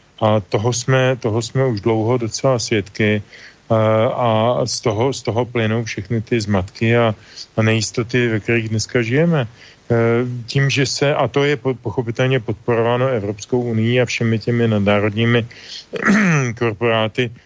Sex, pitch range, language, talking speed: male, 110-130 Hz, Slovak, 140 wpm